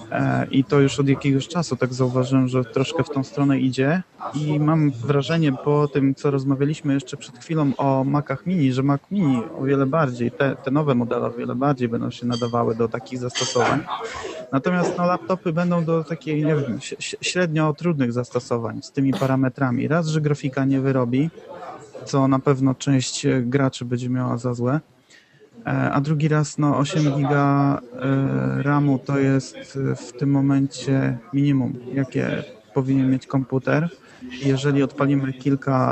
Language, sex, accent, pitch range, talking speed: Polish, male, native, 130-145 Hz, 150 wpm